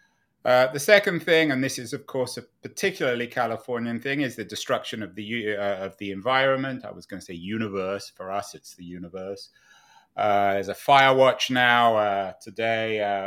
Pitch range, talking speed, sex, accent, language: 100-125 Hz, 185 wpm, male, British, English